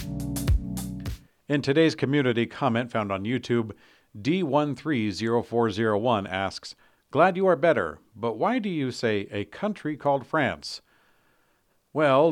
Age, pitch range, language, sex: 50-69, 100-125 Hz, English, male